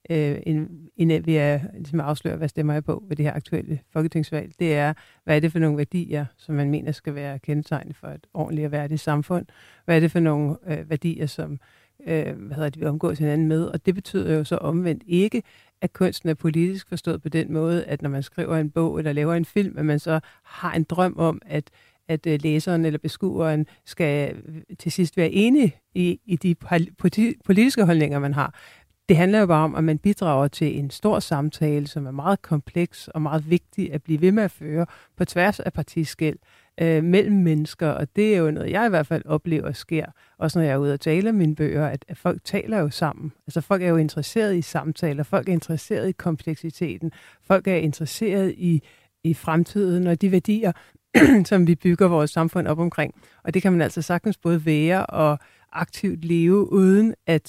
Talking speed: 200 wpm